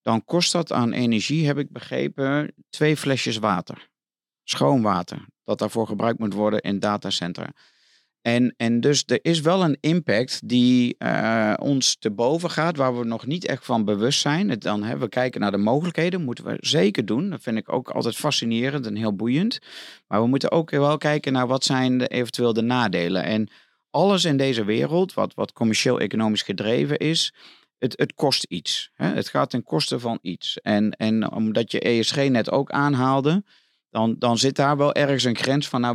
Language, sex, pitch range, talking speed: Dutch, male, 110-145 Hz, 190 wpm